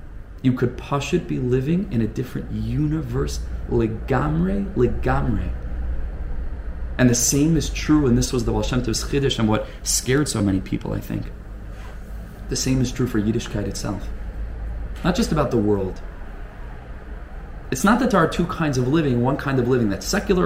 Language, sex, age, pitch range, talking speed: English, male, 20-39, 100-130 Hz, 165 wpm